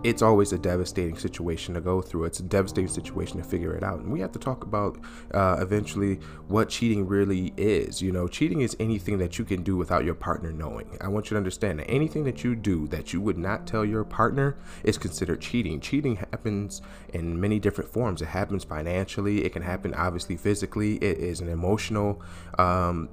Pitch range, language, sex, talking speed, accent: 90-110 Hz, English, male, 210 wpm, American